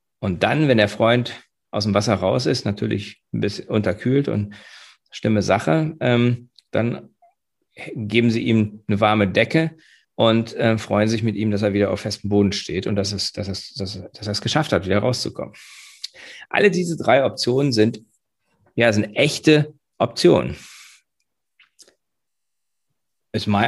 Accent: German